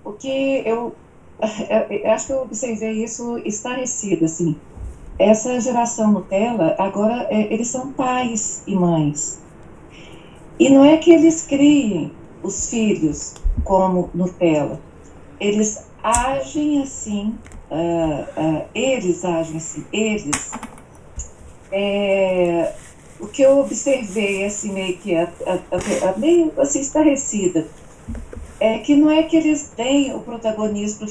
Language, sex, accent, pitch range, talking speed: Portuguese, female, Brazilian, 185-265 Hz, 110 wpm